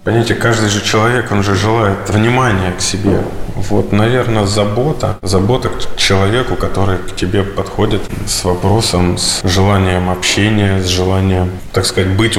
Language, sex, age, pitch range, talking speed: Russian, male, 20-39, 90-105 Hz, 145 wpm